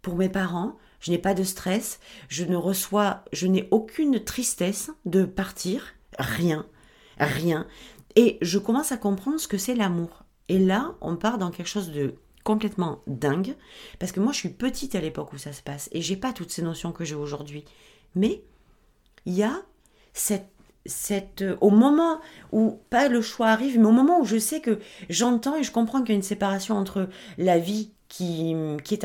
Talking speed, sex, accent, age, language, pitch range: 195 wpm, female, French, 40-59, French, 175-220 Hz